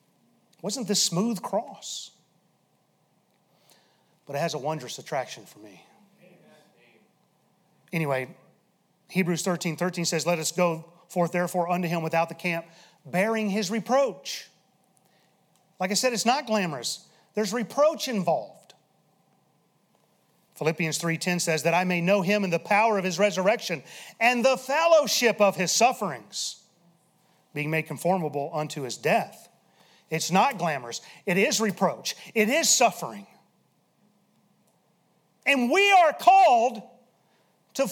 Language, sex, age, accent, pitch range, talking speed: English, male, 30-49, American, 170-245 Hz, 125 wpm